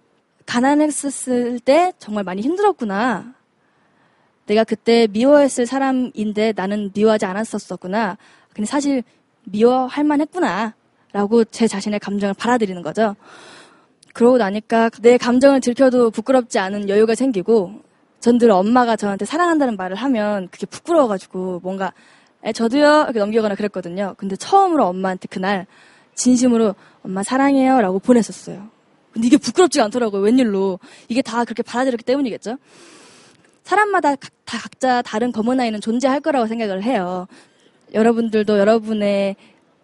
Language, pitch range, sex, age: Korean, 200-255 Hz, female, 20-39